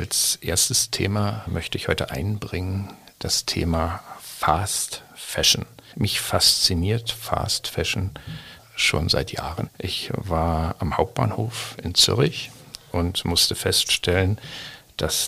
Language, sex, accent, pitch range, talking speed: German, male, German, 85-115 Hz, 110 wpm